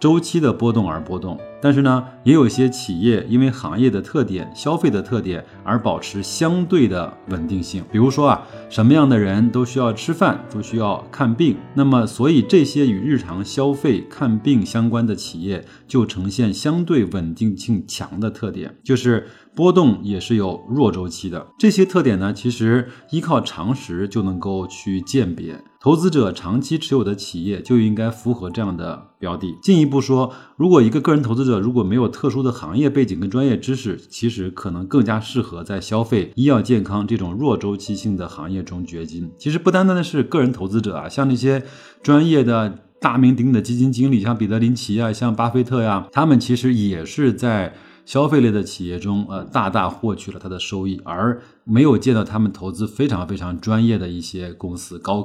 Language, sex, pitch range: Chinese, male, 100-130 Hz